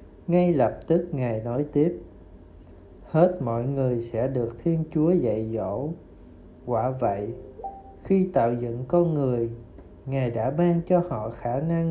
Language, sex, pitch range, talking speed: Vietnamese, male, 115-165 Hz, 145 wpm